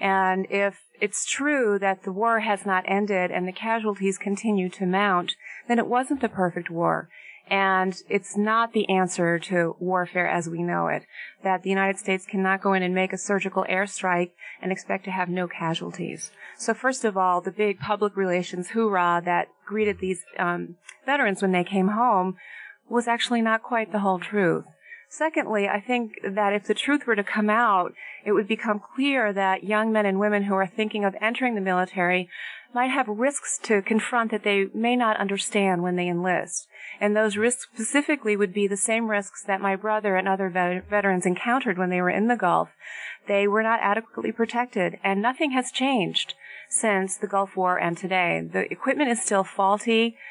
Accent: American